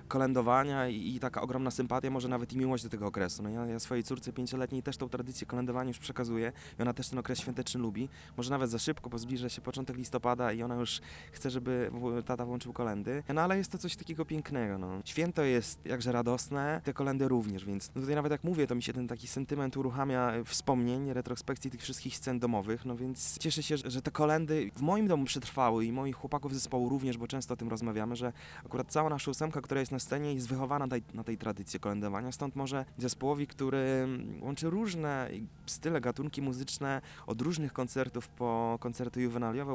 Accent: native